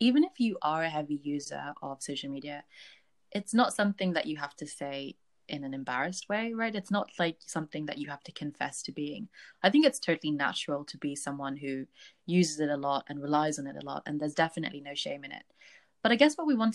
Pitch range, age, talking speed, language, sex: 145-195 Hz, 20-39, 235 wpm, English, female